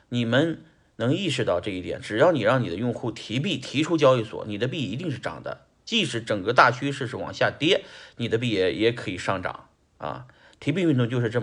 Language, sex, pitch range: Chinese, male, 115-135 Hz